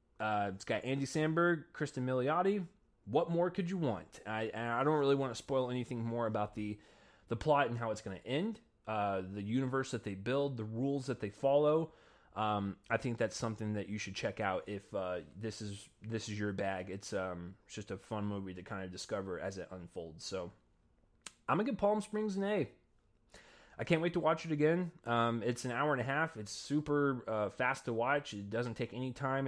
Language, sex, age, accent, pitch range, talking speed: English, male, 20-39, American, 105-130 Hz, 220 wpm